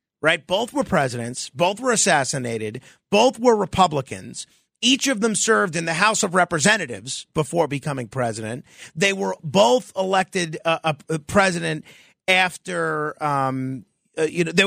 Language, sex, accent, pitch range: English, male, American, 155-225 Hz